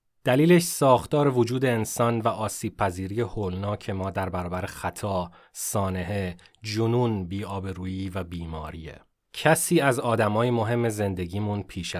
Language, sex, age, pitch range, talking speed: Persian, male, 30-49, 90-125 Hz, 110 wpm